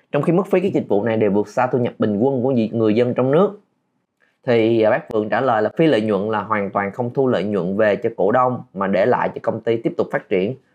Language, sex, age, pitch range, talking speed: Vietnamese, male, 20-39, 110-155 Hz, 280 wpm